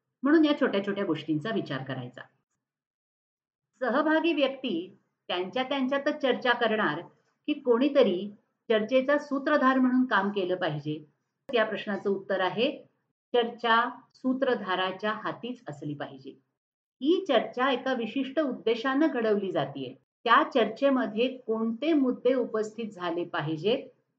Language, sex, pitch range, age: Marathi, female, 185-260 Hz, 50-69